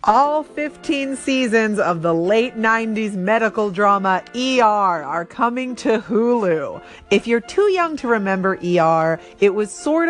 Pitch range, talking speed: 180-255 Hz, 145 wpm